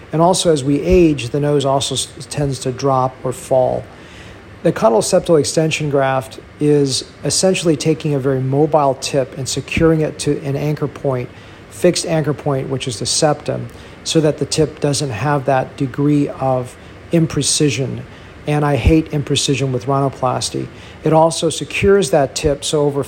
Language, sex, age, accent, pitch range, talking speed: English, male, 50-69, American, 130-155 Hz, 160 wpm